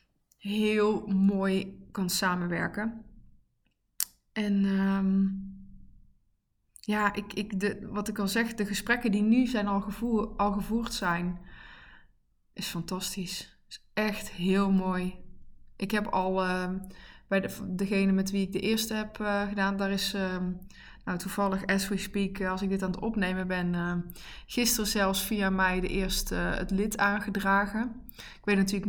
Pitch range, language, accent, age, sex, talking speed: 190-215 Hz, Dutch, Dutch, 20-39, female, 135 wpm